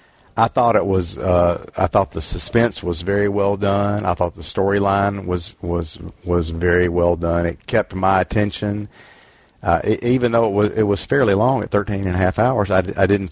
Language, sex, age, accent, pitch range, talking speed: English, male, 50-69, American, 90-105 Hz, 210 wpm